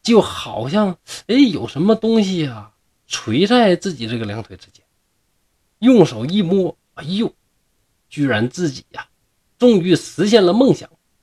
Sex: male